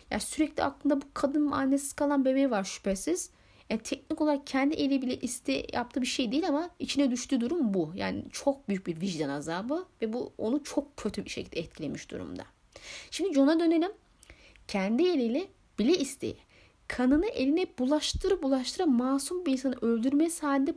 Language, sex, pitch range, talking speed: Turkish, female, 220-290 Hz, 165 wpm